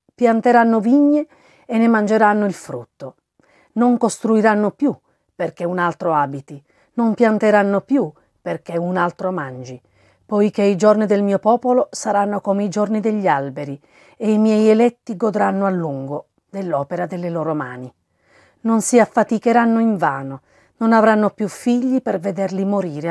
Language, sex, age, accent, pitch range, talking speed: Italian, female, 40-59, native, 170-225 Hz, 145 wpm